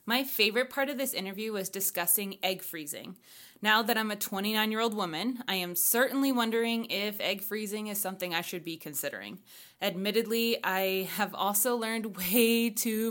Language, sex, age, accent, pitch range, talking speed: English, female, 20-39, American, 185-235 Hz, 165 wpm